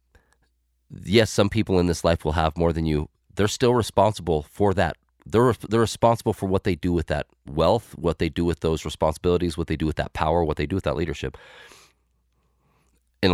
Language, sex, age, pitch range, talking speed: English, male, 30-49, 80-105 Hz, 200 wpm